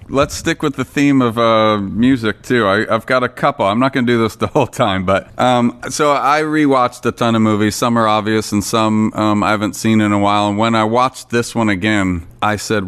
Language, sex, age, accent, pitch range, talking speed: English, male, 30-49, American, 105-135 Hz, 245 wpm